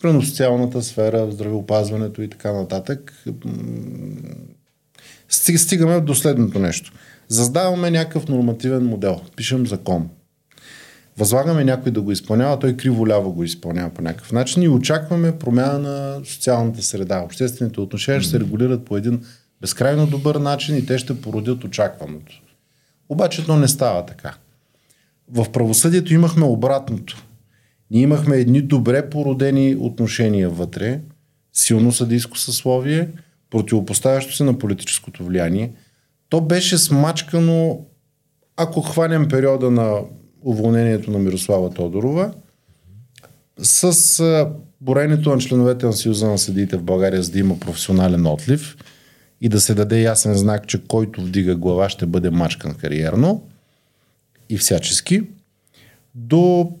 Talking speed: 125 wpm